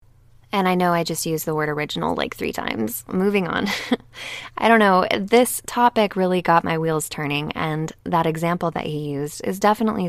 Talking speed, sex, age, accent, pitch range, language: 190 wpm, female, 20-39, American, 155-215 Hz, English